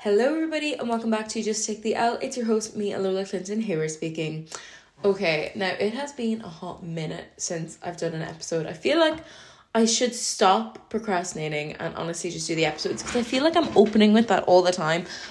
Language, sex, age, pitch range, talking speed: English, female, 20-39, 175-235 Hz, 220 wpm